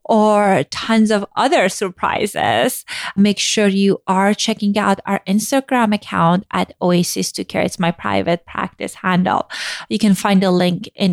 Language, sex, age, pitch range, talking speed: English, female, 30-49, 195-275 Hz, 145 wpm